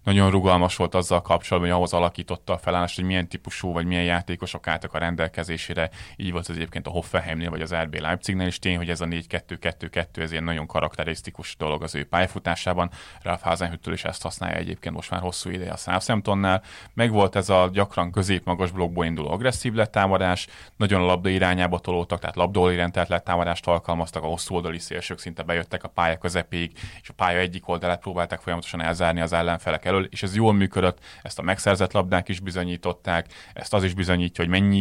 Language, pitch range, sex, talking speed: Hungarian, 85-95 Hz, male, 190 wpm